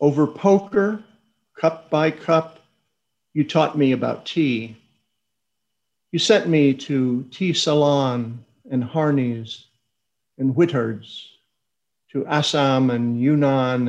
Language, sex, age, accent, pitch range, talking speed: English, male, 50-69, American, 120-160 Hz, 105 wpm